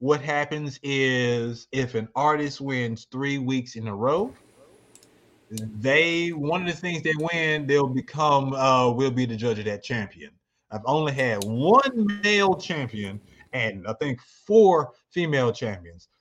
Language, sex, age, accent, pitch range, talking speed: English, male, 30-49, American, 125-165 Hz, 150 wpm